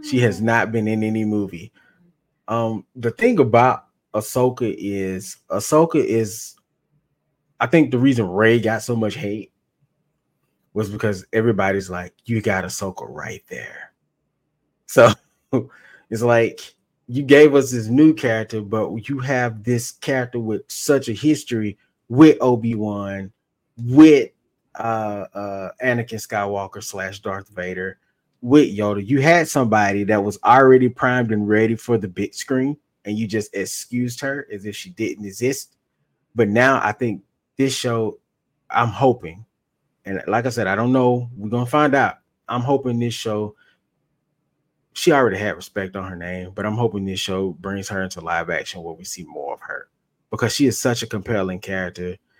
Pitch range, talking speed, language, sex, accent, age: 100-130 Hz, 160 wpm, English, male, American, 20-39